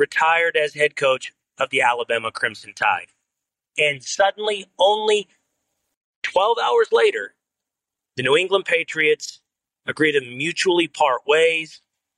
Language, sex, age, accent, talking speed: English, male, 40-59, American, 120 wpm